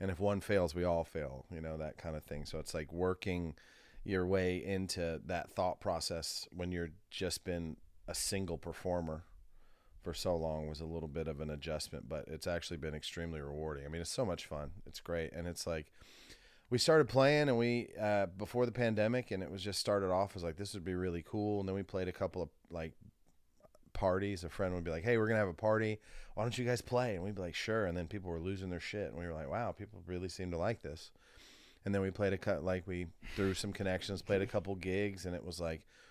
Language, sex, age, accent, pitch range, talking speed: English, male, 30-49, American, 85-100 Hz, 245 wpm